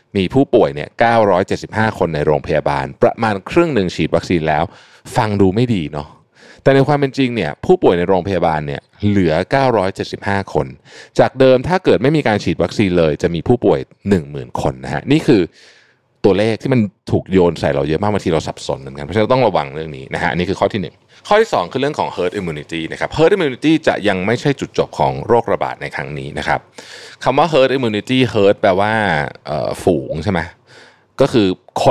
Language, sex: Thai, male